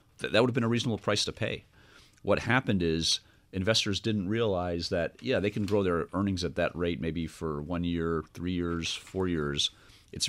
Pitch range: 75-95 Hz